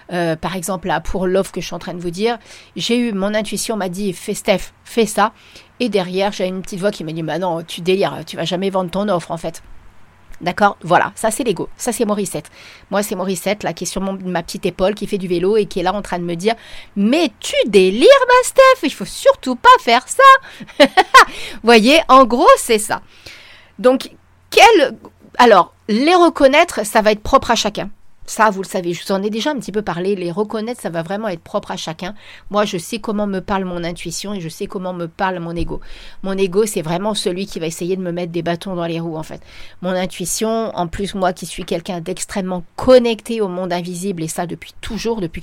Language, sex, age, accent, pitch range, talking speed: French, female, 40-59, French, 180-220 Hz, 240 wpm